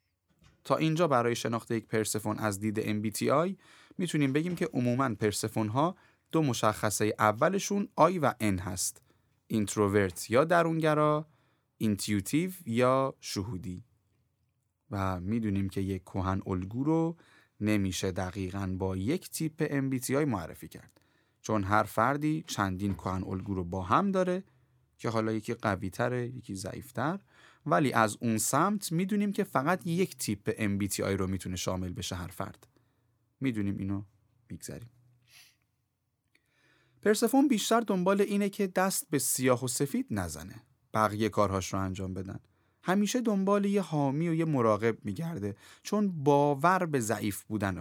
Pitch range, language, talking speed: 100-155 Hz, Persian, 140 wpm